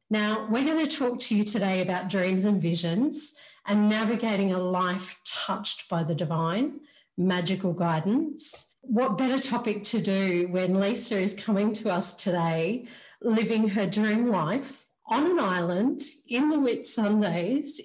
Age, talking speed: 40-59, 150 wpm